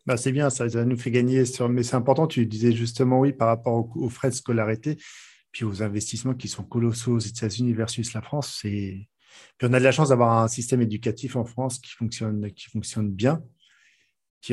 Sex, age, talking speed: male, 40-59, 220 wpm